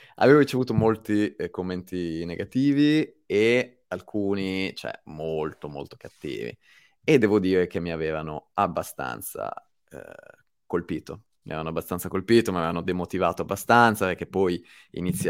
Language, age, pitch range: Italian, 20-39, 90-110 Hz